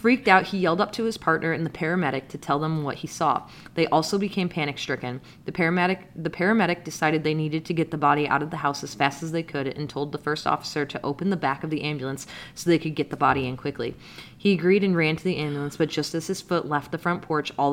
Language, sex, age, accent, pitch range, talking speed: English, female, 20-39, American, 140-165 Hz, 265 wpm